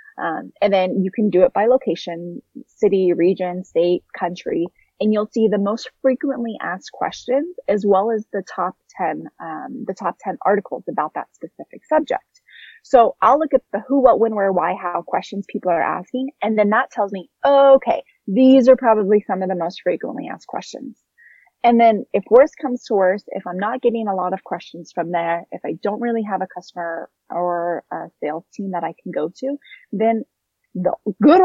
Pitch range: 180-255 Hz